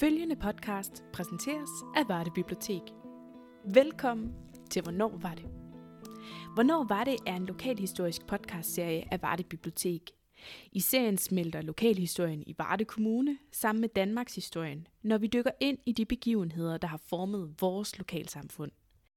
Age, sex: 20-39, female